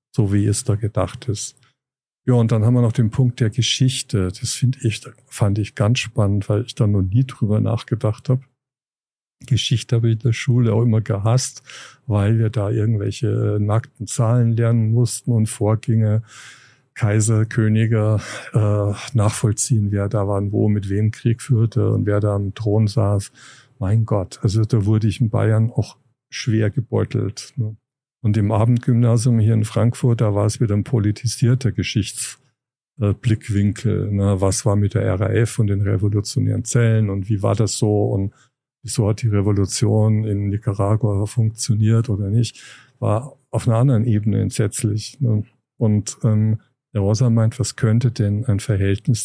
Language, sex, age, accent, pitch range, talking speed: German, male, 50-69, German, 105-120 Hz, 165 wpm